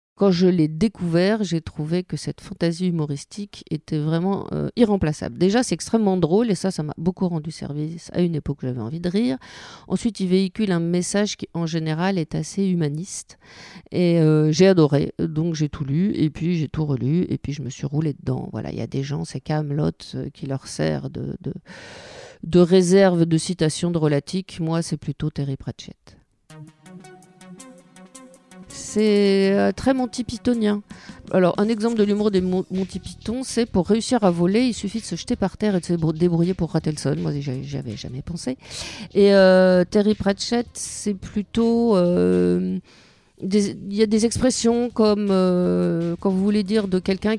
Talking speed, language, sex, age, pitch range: 180 wpm, French, female, 40-59, 155-205 Hz